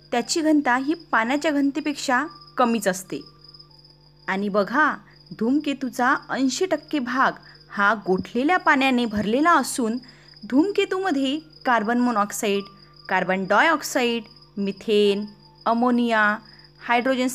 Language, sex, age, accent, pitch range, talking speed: Marathi, female, 20-39, native, 195-300 Hz, 90 wpm